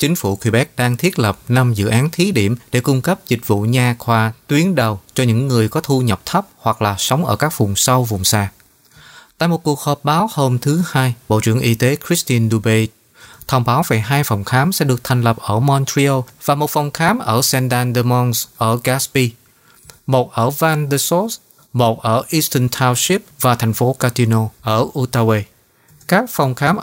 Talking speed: 195 wpm